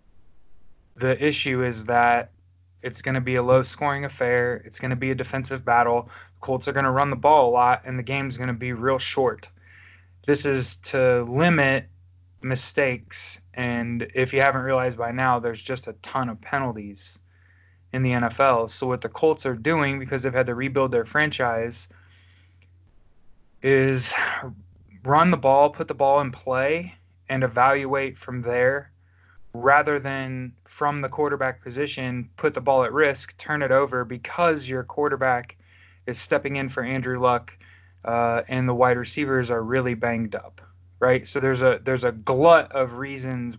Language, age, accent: English, 20-39, American